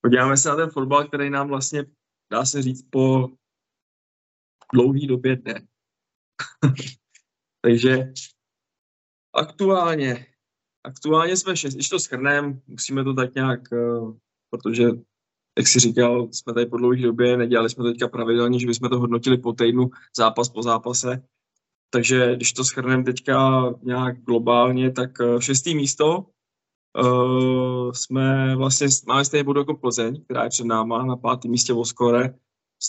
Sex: male